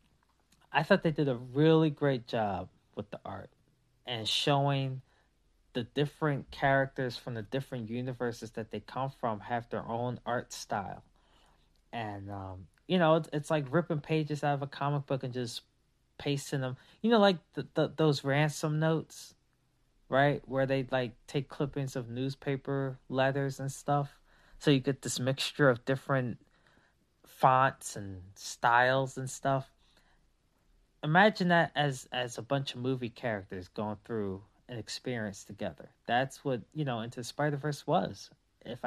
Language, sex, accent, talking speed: English, male, American, 155 wpm